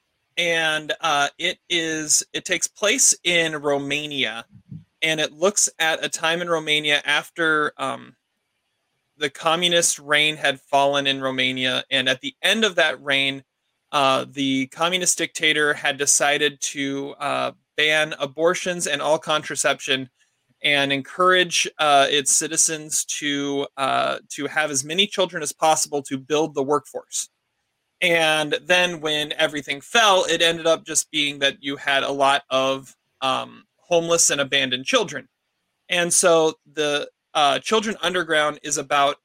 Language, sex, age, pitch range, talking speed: English, male, 30-49, 140-160 Hz, 140 wpm